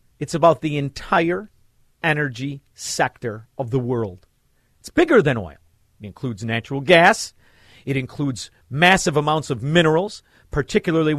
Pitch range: 110-165 Hz